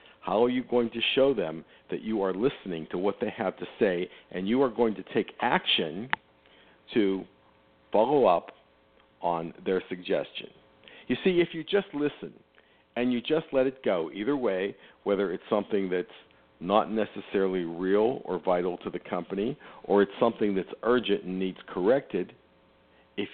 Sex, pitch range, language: male, 85-120 Hz, English